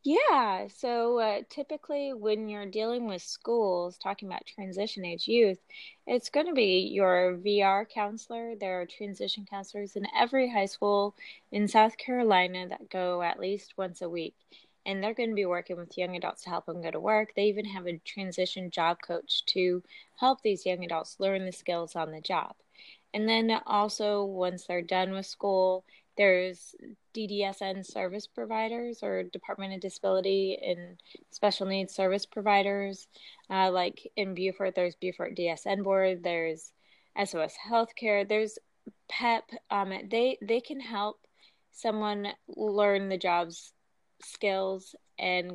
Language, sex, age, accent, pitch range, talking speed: English, female, 20-39, American, 180-215 Hz, 155 wpm